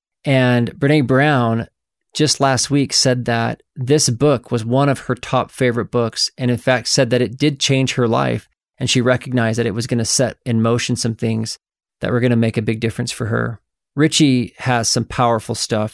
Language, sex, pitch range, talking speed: English, male, 115-130 Hz, 205 wpm